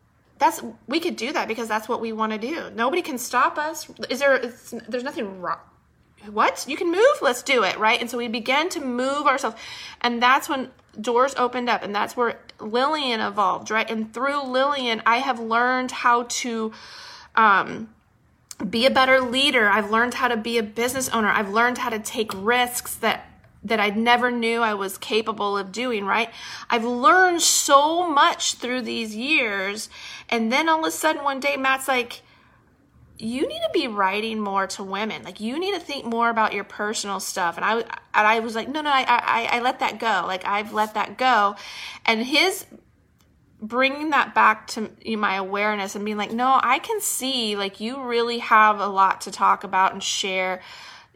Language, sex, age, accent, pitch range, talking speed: English, female, 30-49, American, 215-265 Hz, 195 wpm